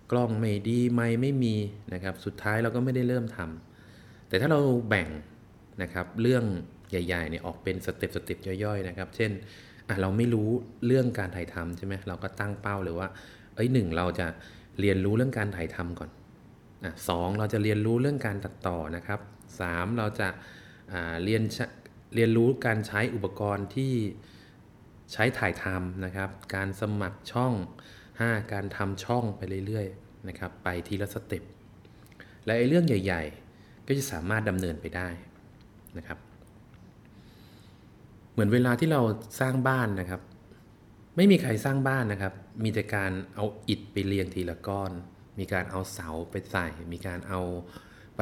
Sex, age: male, 20-39